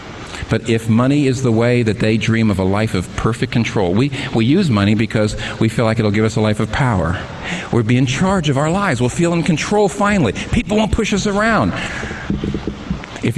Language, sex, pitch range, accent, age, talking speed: English, male, 105-140 Hz, American, 50-69, 215 wpm